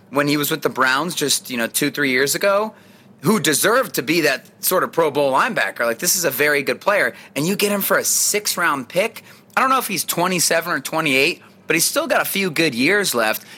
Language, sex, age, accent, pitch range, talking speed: English, male, 30-49, American, 145-200 Hz, 250 wpm